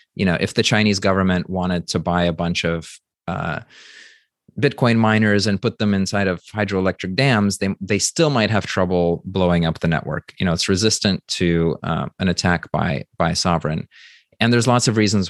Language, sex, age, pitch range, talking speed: English, male, 30-49, 90-110 Hz, 190 wpm